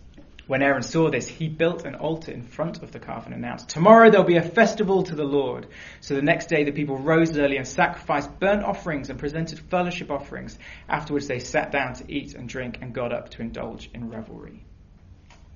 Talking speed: 210 wpm